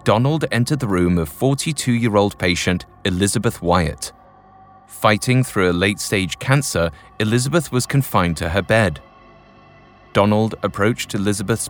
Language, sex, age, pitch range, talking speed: English, male, 30-49, 90-120 Hz, 120 wpm